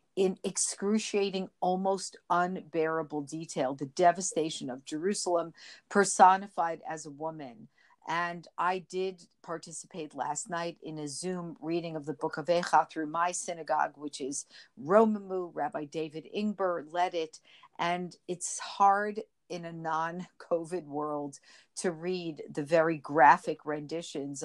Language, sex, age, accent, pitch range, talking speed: English, female, 50-69, American, 155-185 Hz, 130 wpm